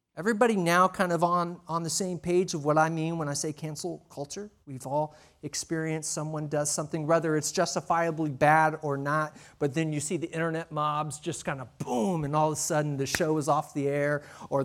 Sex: male